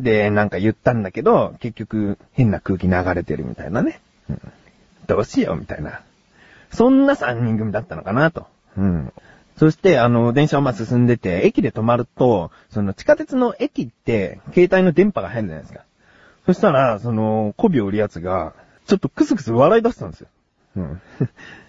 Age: 30-49